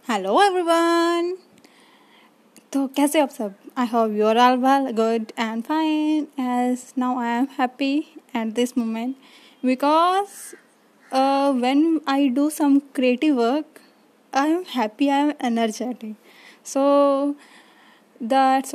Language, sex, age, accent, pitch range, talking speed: Hindi, female, 10-29, native, 235-290 Hz, 120 wpm